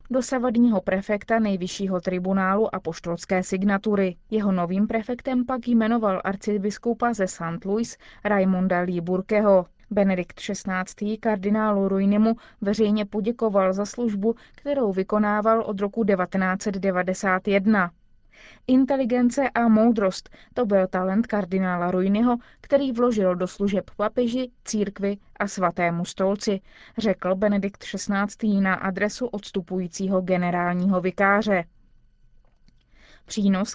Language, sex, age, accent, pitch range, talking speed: Czech, female, 20-39, native, 190-220 Hz, 100 wpm